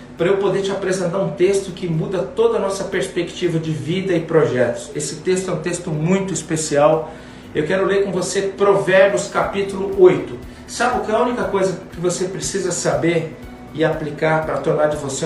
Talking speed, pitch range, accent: 195 wpm, 155-190 Hz, Brazilian